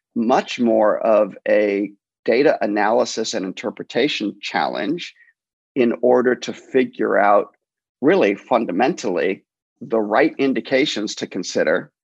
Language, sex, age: English, male, 50-69